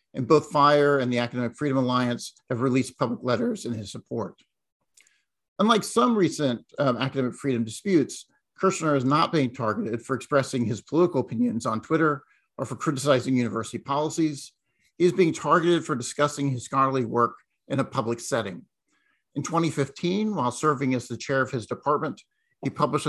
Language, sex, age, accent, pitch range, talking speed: English, male, 50-69, American, 120-145 Hz, 165 wpm